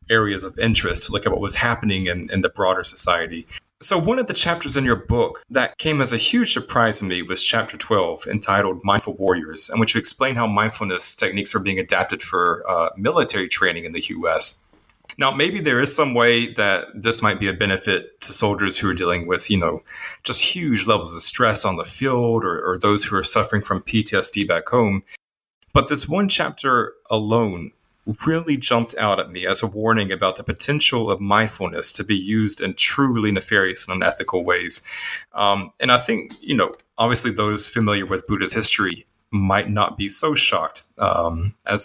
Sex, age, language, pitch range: male, 30-49, English, 100-125 Hz